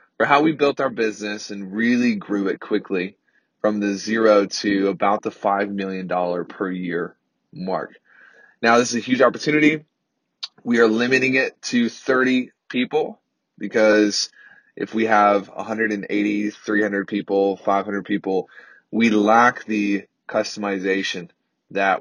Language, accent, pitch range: English, American, 100-120 Hz